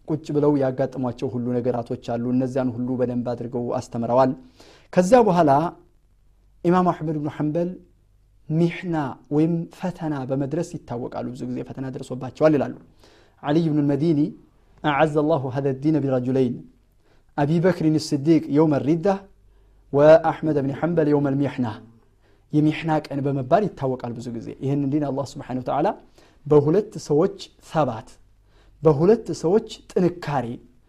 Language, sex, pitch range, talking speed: Amharic, male, 130-175 Hz, 115 wpm